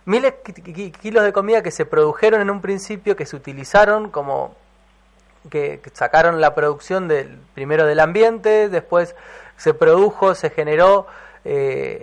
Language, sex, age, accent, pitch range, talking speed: Spanish, male, 20-39, Argentinian, 155-200 Hz, 145 wpm